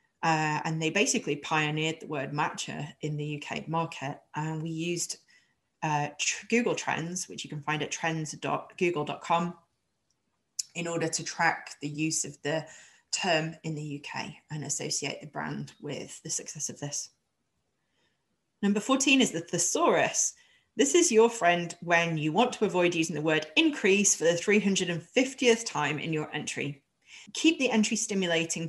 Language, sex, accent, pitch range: English, female, British, 155-200 Hz